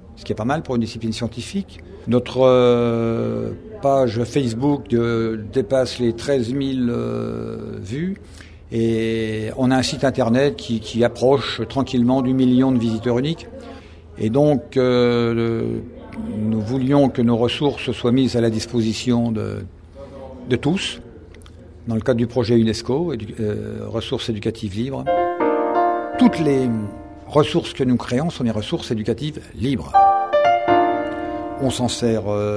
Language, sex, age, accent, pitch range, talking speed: French, male, 60-79, French, 105-130 Hz, 135 wpm